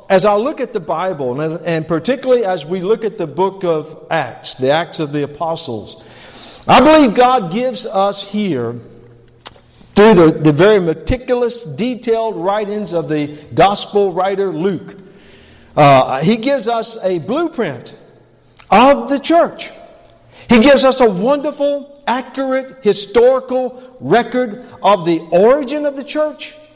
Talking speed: 140 wpm